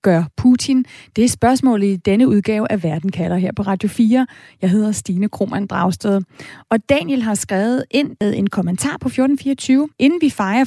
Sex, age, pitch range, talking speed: female, 30-49, 205-260 Hz, 175 wpm